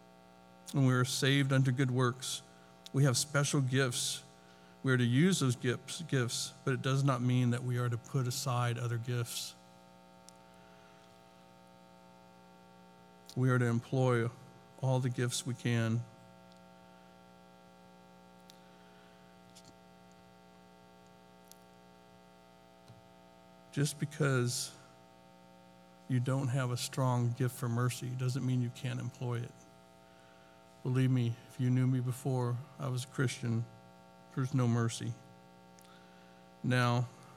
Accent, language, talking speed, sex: American, English, 115 wpm, male